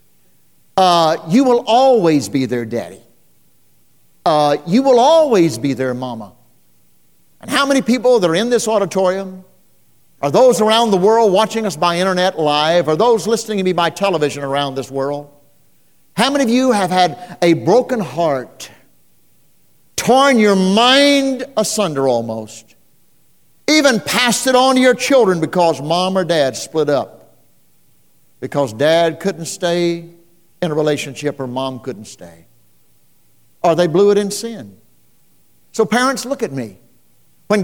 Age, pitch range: 50-69, 160-220 Hz